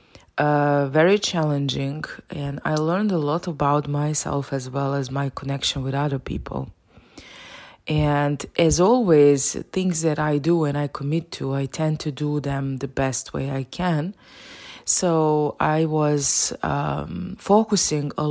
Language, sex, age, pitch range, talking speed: English, female, 20-39, 135-150 Hz, 150 wpm